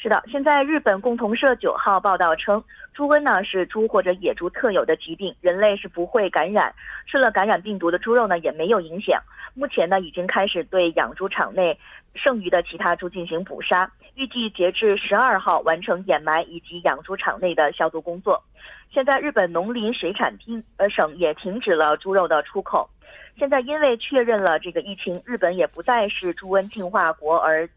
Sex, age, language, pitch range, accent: female, 30-49, Korean, 170-230 Hz, Chinese